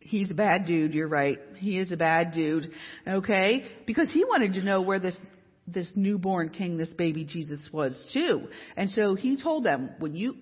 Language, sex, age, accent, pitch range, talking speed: English, female, 50-69, American, 170-225 Hz, 195 wpm